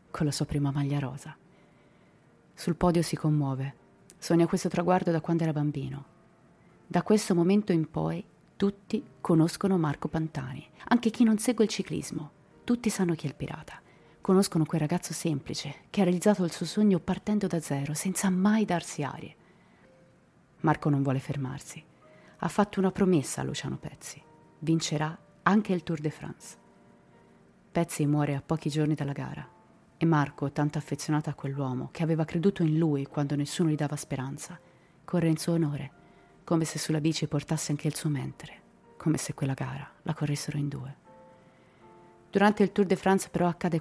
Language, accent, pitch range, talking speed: Italian, native, 145-185 Hz, 170 wpm